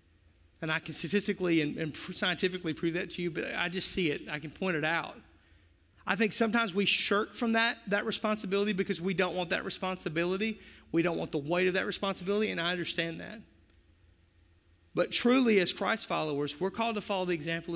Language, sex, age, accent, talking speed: English, male, 40-59, American, 200 wpm